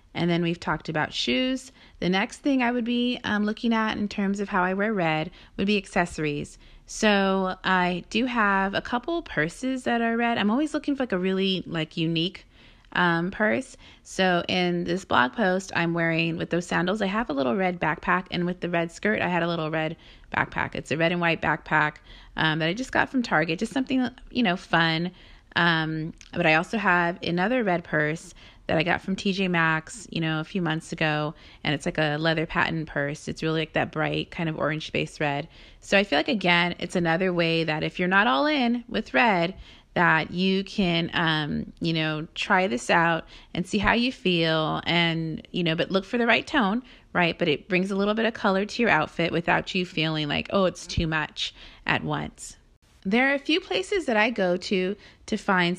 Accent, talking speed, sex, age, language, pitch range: American, 215 wpm, female, 30-49, English, 160-210 Hz